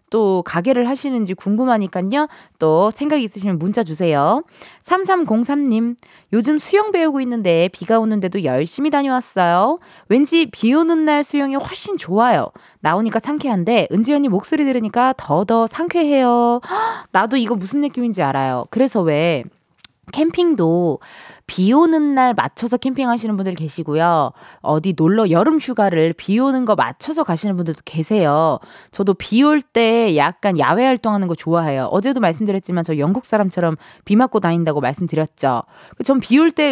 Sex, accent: female, native